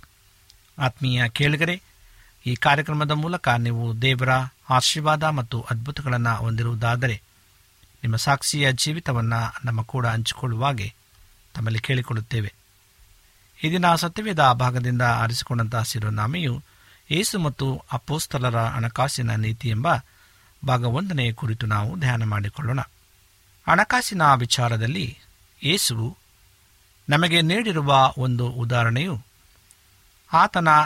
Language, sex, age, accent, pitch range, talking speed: Kannada, male, 50-69, native, 100-145 Hz, 85 wpm